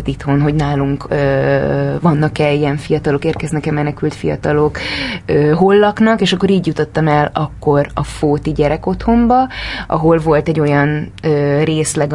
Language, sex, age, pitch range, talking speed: Hungarian, female, 20-39, 150-175 Hz, 145 wpm